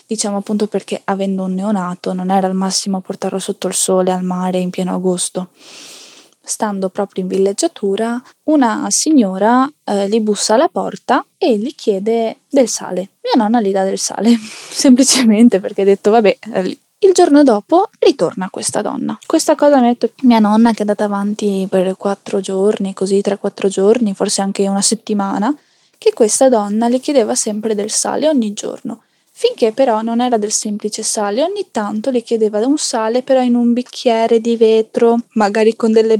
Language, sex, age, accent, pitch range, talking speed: Italian, female, 10-29, native, 200-240 Hz, 175 wpm